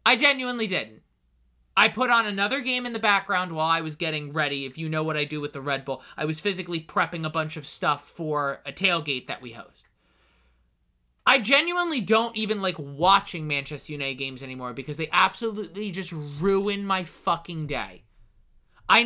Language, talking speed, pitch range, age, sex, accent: English, 185 wpm, 145-200 Hz, 20-39, male, American